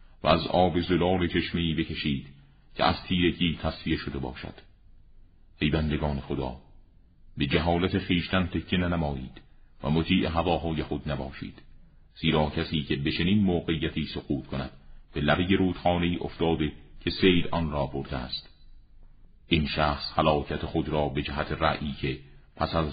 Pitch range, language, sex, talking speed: 75-85 Hz, Persian, male, 140 wpm